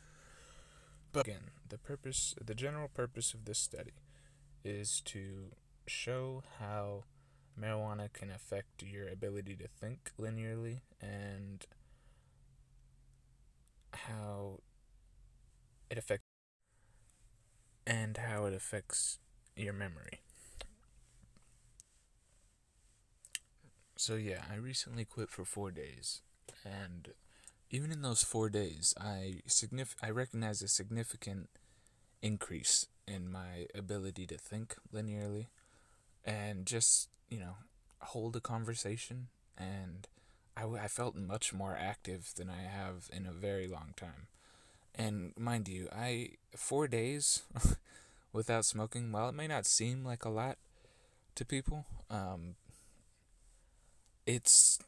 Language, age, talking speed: English, 20-39, 110 wpm